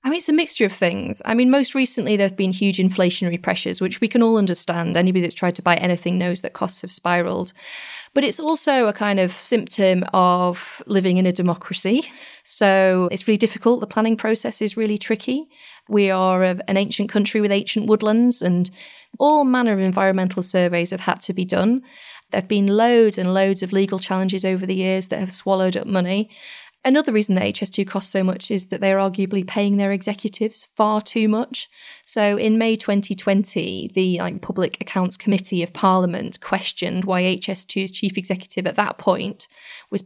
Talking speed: 190 wpm